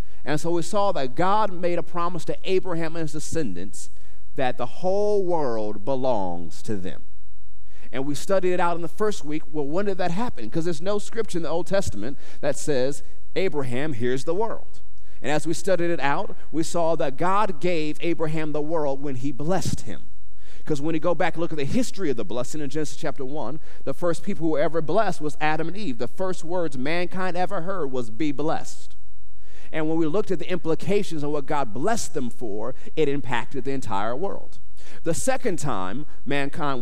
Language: English